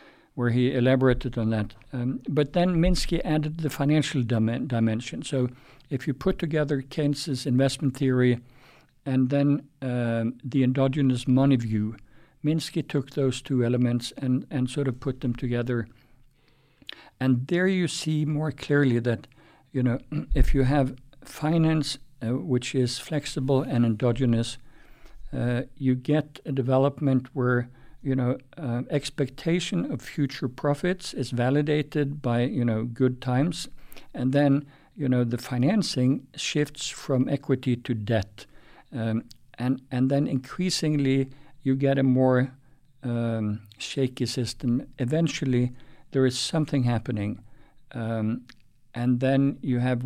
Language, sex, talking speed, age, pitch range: English, male, 135 wpm, 60-79, 125-140 Hz